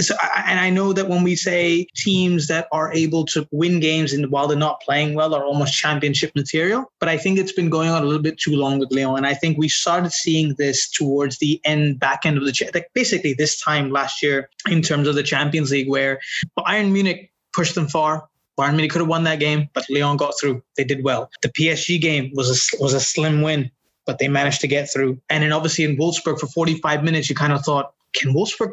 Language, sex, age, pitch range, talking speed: English, male, 20-39, 140-165 Hz, 240 wpm